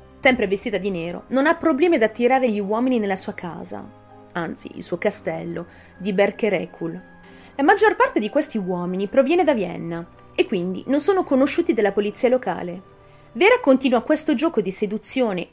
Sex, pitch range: female, 180-265 Hz